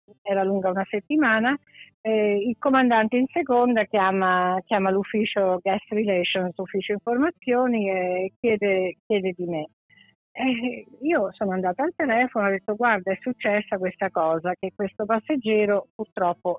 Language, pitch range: Italian, 190-230 Hz